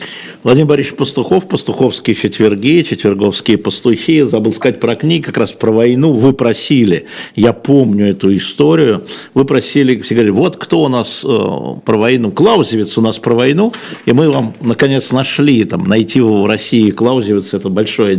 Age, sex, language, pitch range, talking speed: 50-69, male, Russian, 105-125 Hz, 160 wpm